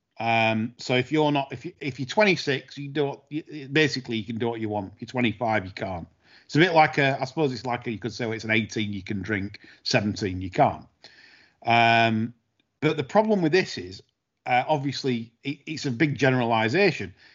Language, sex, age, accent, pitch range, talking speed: English, male, 40-59, British, 115-140 Hz, 210 wpm